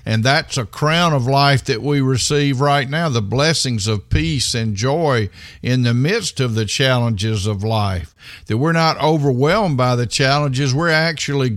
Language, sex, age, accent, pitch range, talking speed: English, male, 50-69, American, 115-150 Hz, 175 wpm